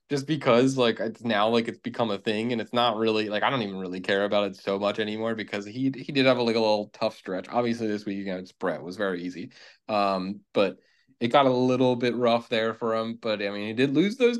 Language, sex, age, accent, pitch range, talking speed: English, male, 20-39, American, 105-130 Hz, 270 wpm